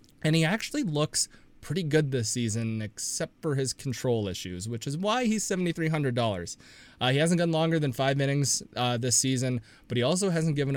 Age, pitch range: 20-39, 110-140 Hz